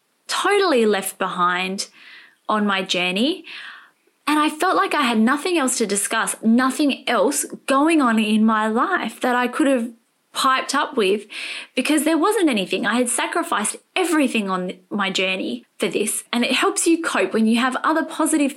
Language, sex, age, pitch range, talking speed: English, female, 20-39, 205-295 Hz, 170 wpm